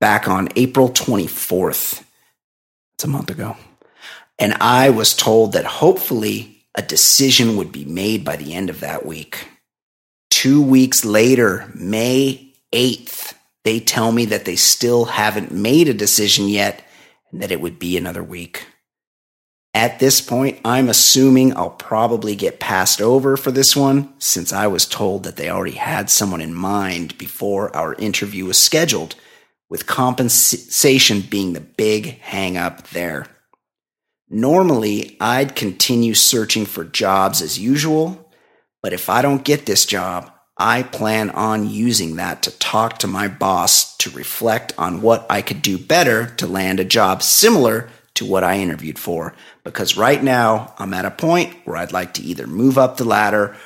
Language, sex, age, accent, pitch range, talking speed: English, male, 30-49, American, 95-130 Hz, 160 wpm